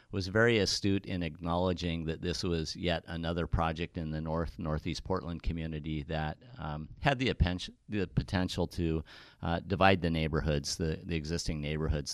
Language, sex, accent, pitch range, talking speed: English, male, American, 80-90 Hz, 160 wpm